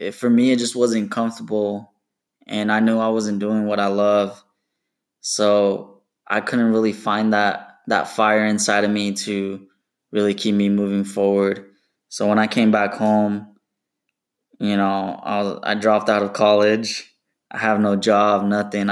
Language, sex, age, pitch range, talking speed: English, male, 10-29, 100-110 Hz, 165 wpm